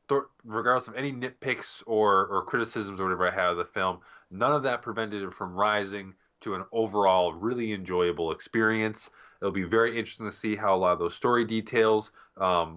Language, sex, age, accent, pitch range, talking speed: English, male, 20-39, American, 90-115 Hz, 195 wpm